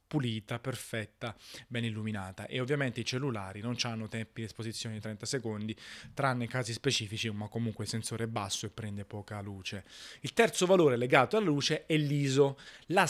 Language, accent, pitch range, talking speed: Italian, native, 115-160 Hz, 180 wpm